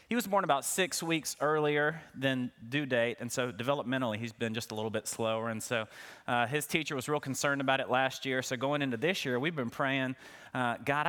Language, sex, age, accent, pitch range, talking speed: English, male, 30-49, American, 115-155 Hz, 225 wpm